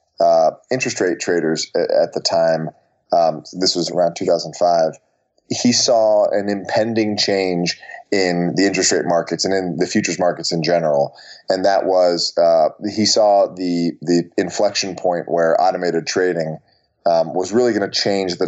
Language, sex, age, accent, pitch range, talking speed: English, male, 30-49, American, 85-100 Hz, 160 wpm